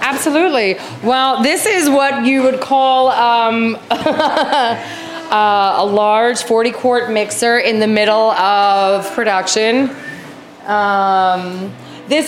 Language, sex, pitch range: English, female, 205-270 Hz